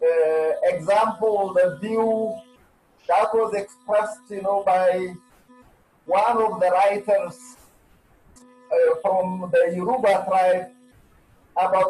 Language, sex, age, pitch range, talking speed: English, male, 50-69, 185-250 Hz, 100 wpm